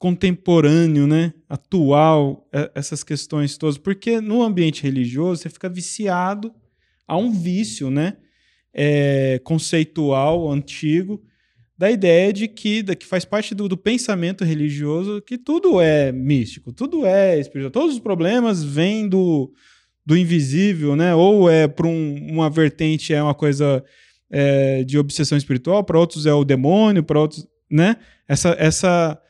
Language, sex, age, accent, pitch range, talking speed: Portuguese, male, 20-39, Brazilian, 145-190 Hz, 140 wpm